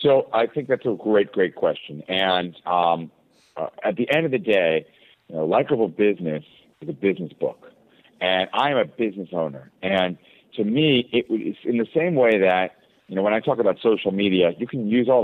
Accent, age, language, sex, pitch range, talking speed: American, 50-69, English, male, 95-120 Hz, 205 wpm